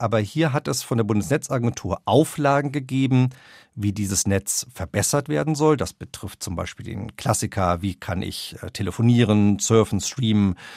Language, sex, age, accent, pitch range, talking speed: German, male, 50-69, German, 100-135 Hz, 150 wpm